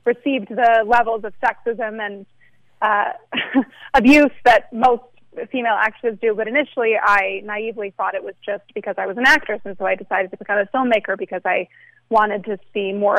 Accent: American